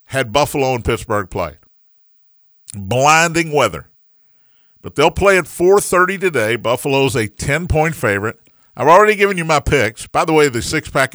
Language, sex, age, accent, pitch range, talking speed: English, male, 50-69, American, 120-165 Hz, 150 wpm